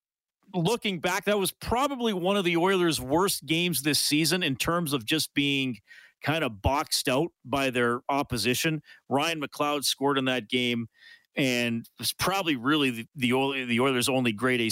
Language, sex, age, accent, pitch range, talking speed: English, male, 40-59, American, 110-145 Hz, 165 wpm